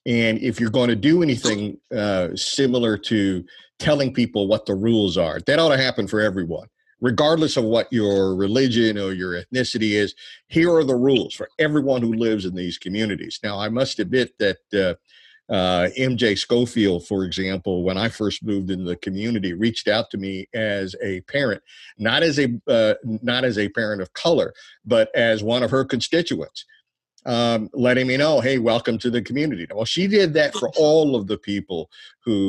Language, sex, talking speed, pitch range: English, male, 190 wpm, 95-130 Hz